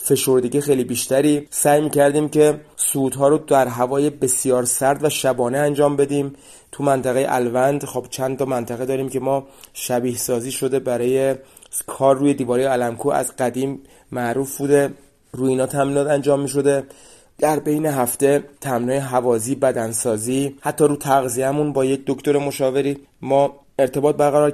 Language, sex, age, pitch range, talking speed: Persian, male, 30-49, 125-145 Hz, 145 wpm